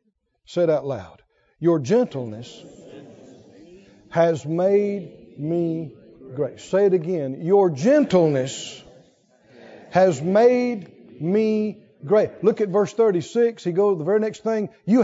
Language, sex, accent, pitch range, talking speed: English, male, American, 155-220 Hz, 125 wpm